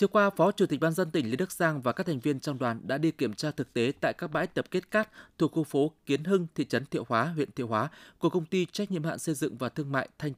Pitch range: 130-175 Hz